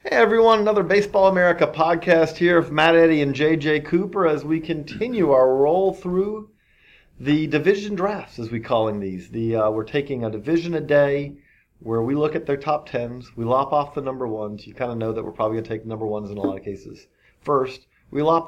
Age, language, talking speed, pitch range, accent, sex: 40-59, English, 215 wpm, 120-155 Hz, American, male